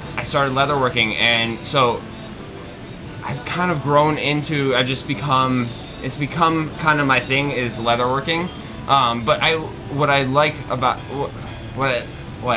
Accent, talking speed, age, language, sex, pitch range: American, 155 wpm, 20-39, English, male, 120-140 Hz